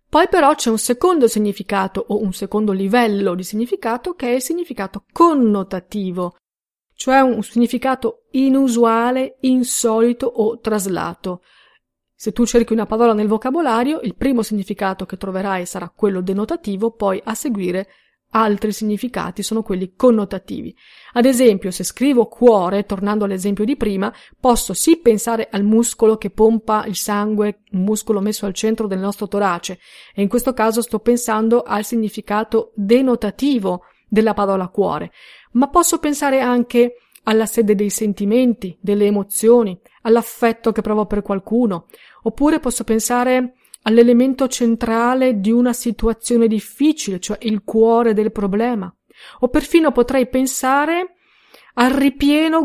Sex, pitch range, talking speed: female, 205-250 Hz, 135 wpm